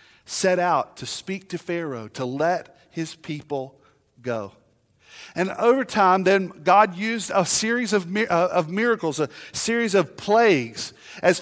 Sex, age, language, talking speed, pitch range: male, 40-59, English, 150 wpm, 145-205 Hz